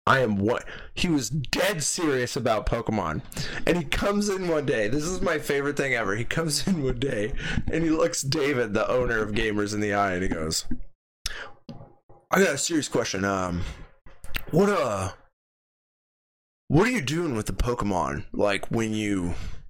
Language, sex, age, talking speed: English, male, 20-39, 175 wpm